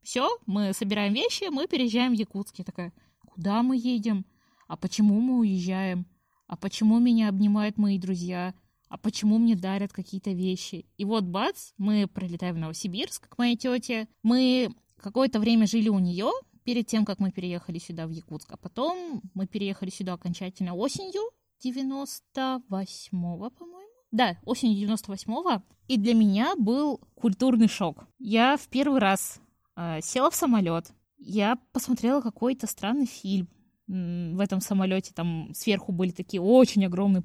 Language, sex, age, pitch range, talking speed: Russian, female, 20-39, 185-240 Hz, 150 wpm